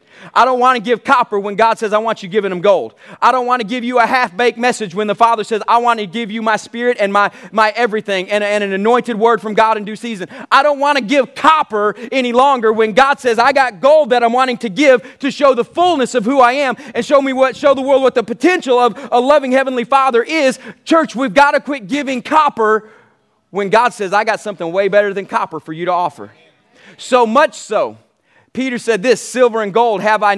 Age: 30-49